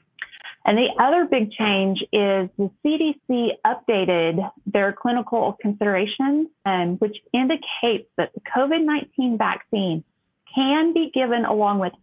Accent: American